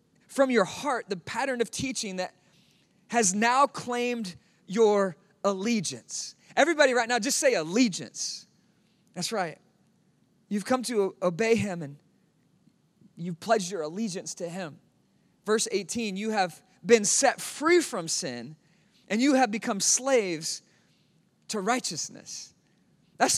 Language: English